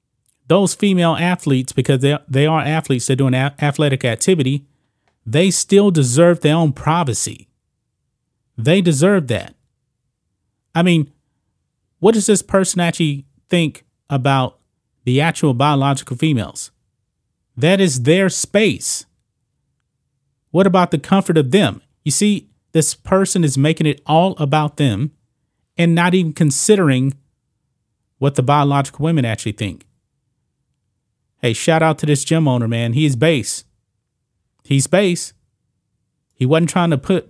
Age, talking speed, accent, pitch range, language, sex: 30-49, 130 wpm, American, 125-170 Hz, English, male